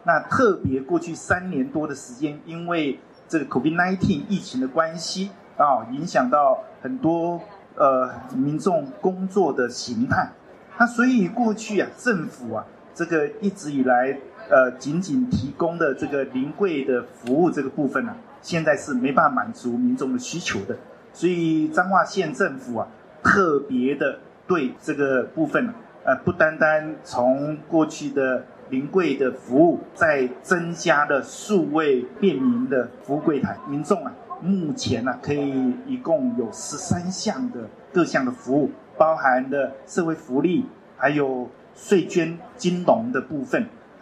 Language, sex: Chinese, male